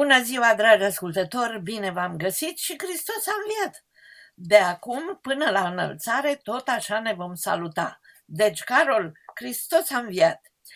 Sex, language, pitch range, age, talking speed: female, Romanian, 180-290 Hz, 50-69, 145 wpm